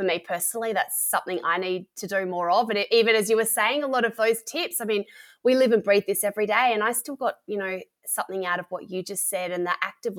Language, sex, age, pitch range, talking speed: English, female, 20-39, 180-225 Hz, 285 wpm